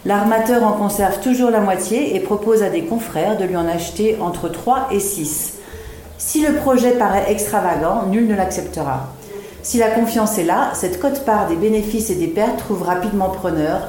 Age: 40-59